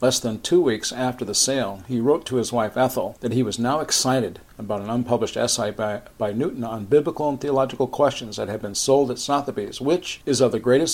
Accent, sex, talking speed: American, male, 225 wpm